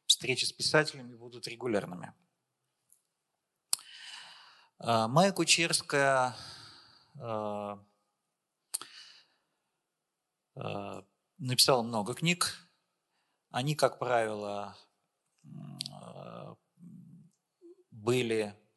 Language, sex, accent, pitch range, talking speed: Russian, male, native, 115-150 Hz, 45 wpm